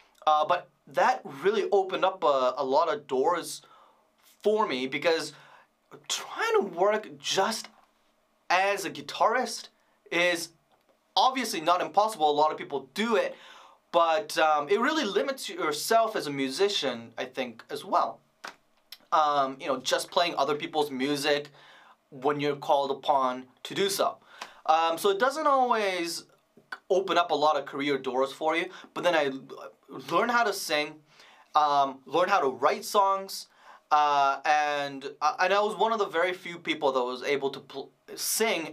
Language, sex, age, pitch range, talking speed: English, male, 20-39, 145-195 Hz, 160 wpm